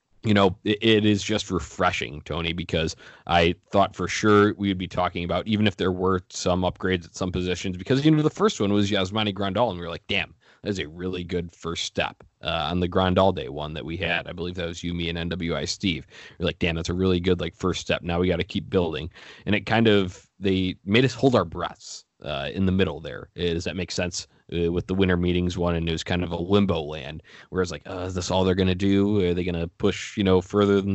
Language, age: English, 20-39